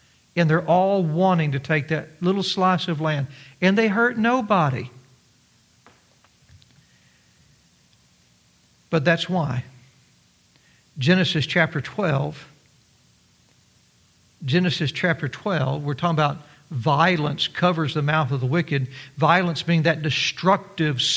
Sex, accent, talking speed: male, American, 110 wpm